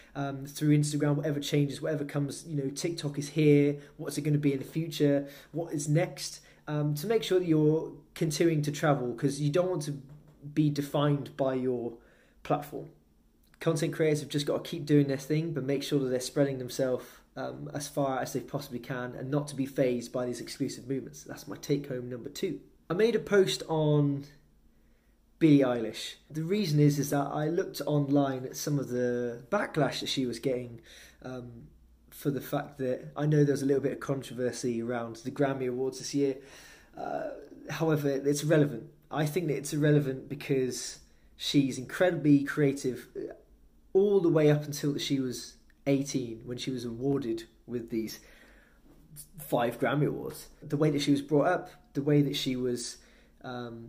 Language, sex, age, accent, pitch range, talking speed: English, male, 20-39, British, 130-150 Hz, 185 wpm